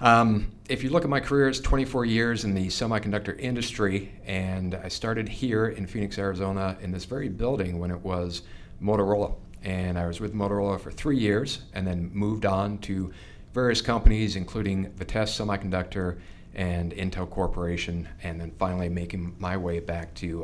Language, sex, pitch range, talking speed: English, male, 85-100 Hz, 170 wpm